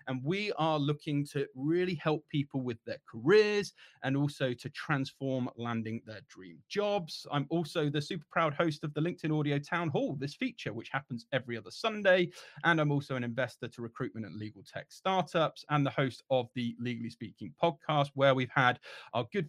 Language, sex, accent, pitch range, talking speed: English, male, British, 125-165 Hz, 190 wpm